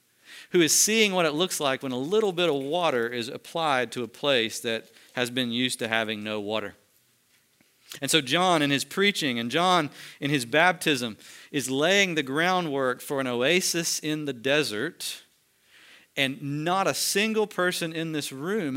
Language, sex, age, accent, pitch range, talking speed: English, male, 40-59, American, 125-175 Hz, 175 wpm